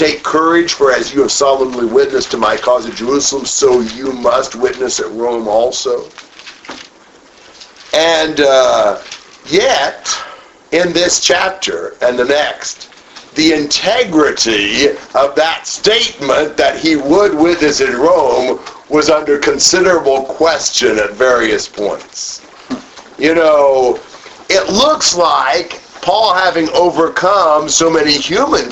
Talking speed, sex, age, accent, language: 120 wpm, male, 50-69, American, English